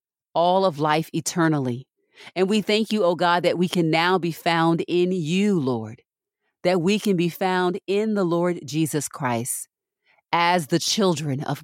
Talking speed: 170 wpm